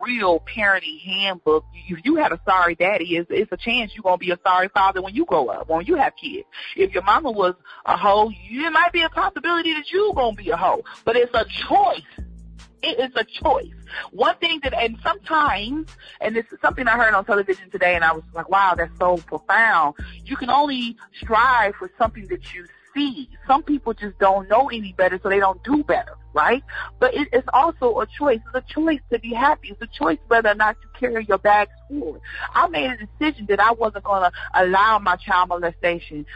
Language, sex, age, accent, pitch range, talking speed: English, female, 30-49, American, 180-265 Hz, 220 wpm